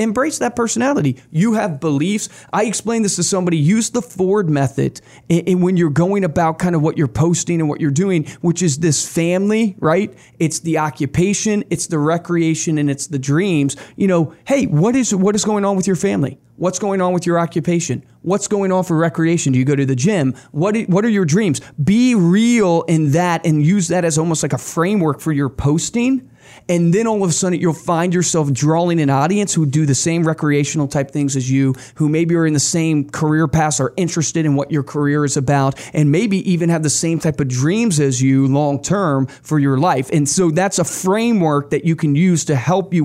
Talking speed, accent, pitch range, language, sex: 220 wpm, American, 145-185 Hz, English, male